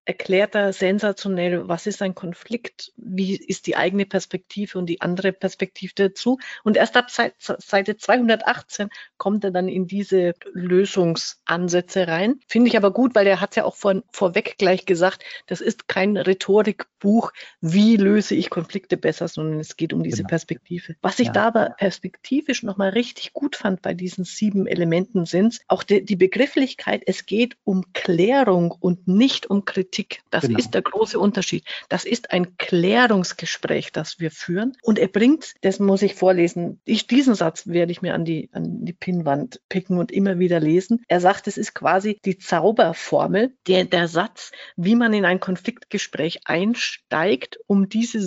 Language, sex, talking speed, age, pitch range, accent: German, female, 165 wpm, 50-69, 180-220 Hz, German